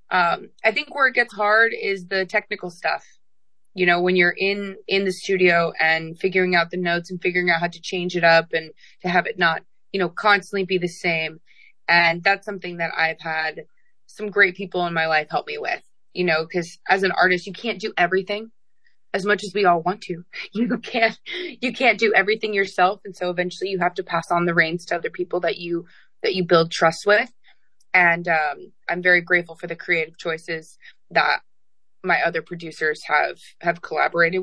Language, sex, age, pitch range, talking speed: English, female, 20-39, 170-210 Hz, 205 wpm